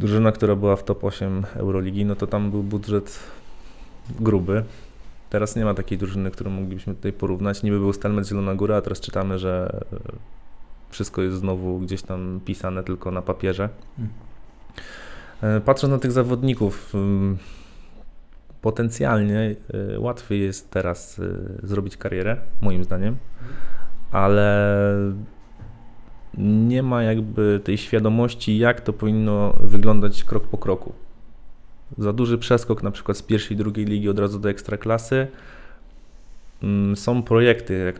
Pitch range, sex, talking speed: 95-110 Hz, male, 130 wpm